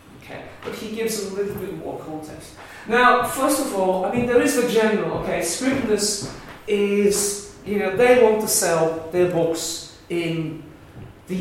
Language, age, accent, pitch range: English, 40-59, British, 135-200 Hz